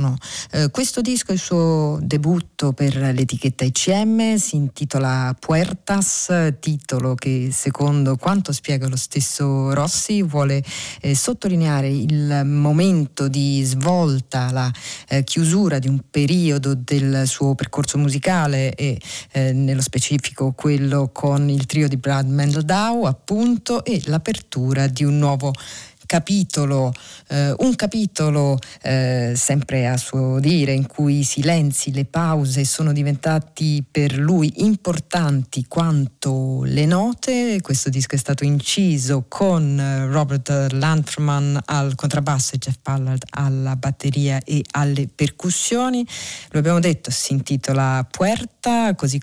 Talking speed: 125 wpm